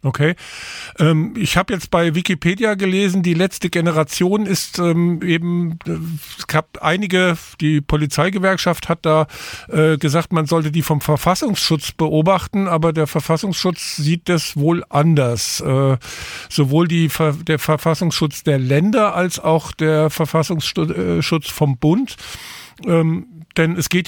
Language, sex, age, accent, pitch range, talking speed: German, male, 50-69, German, 155-185 Hz, 115 wpm